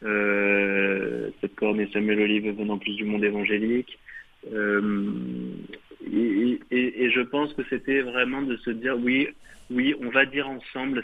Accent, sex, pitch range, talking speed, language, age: French, male, 105-125 Hz, 160 wpm, French, 20-39